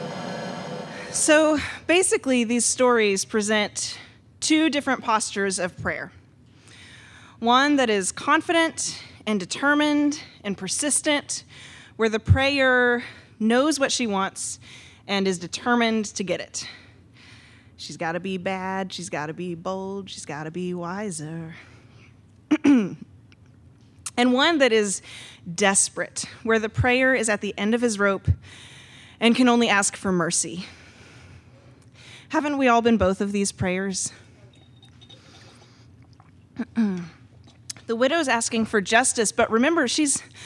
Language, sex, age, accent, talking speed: English, female, 20-39, American, 120 wpm